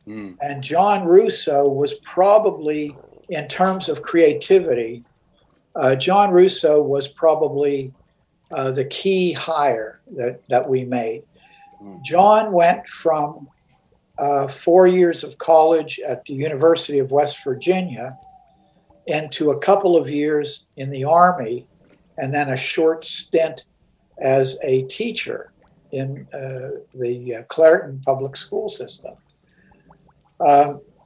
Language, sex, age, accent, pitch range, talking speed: English, male, 60-79, American, 140-185 Hz, 120 wpm